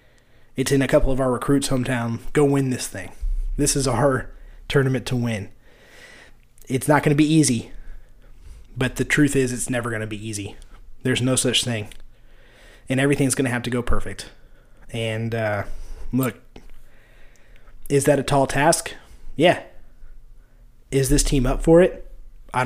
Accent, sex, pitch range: American, male, 120-145 Hz